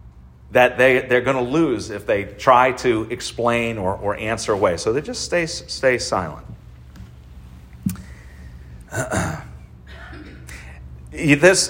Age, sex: 40-59, male